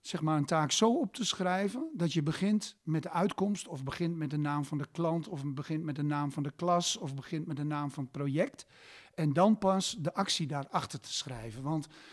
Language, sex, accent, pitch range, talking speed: Dutch, male, Dutch, 140-165 Hz, 235 wpm